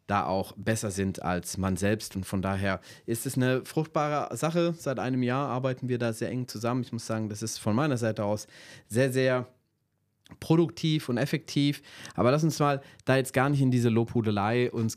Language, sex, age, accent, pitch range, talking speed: German, male, 30-49, German, 110-130 Hz, 200 wpm